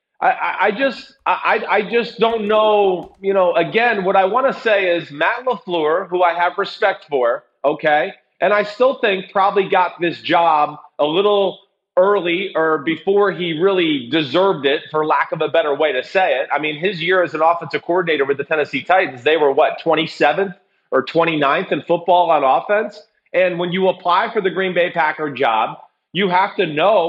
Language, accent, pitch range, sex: English, American, 165-210 Hz, male